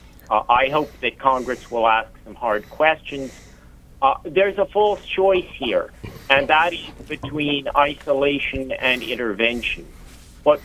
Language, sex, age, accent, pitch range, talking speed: English, male, 50-69, American, 115-140 Hz, 135 wpm